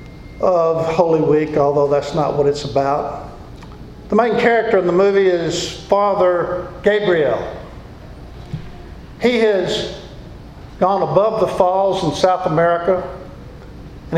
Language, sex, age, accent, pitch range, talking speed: English, male, 50-69, American, 155-195 Hz, 120 wpm